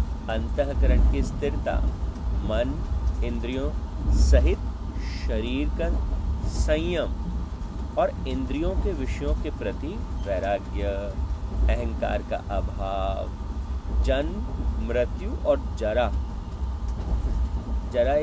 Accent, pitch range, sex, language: native, 65-80 Hz, male, Hindi